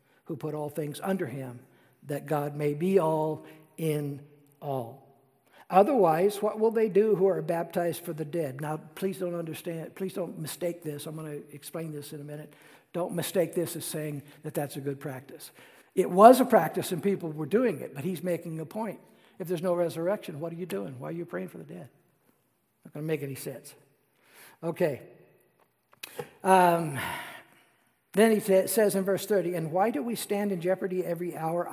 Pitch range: 155-210 Hz